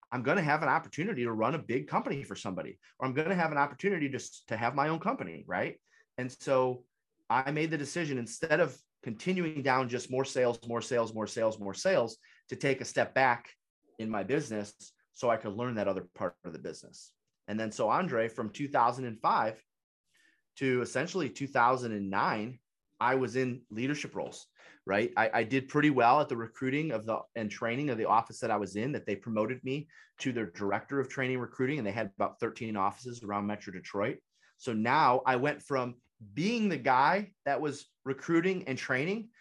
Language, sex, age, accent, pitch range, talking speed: English, male, 30-49, American, 115-145 Hz, 200 wpm